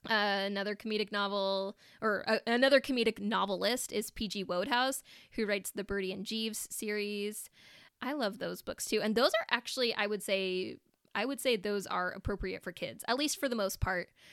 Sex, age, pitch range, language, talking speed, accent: female, 20-39, 195-255 Hz, English, 190 wpm, American